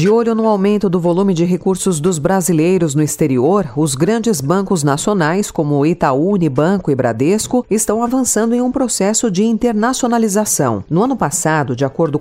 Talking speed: 160 wpm